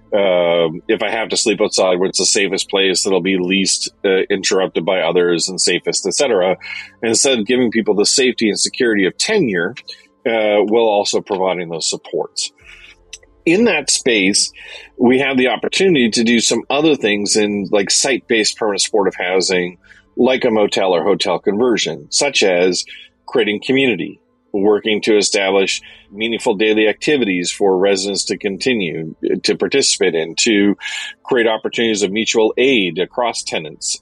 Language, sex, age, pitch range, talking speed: English, male, 40-59, 95-115 Hz, 155 wpm